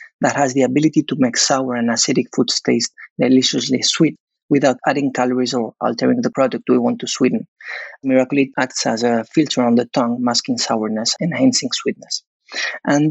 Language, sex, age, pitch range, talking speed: English, male, 30-49, 125-190 Hz, 170 wpm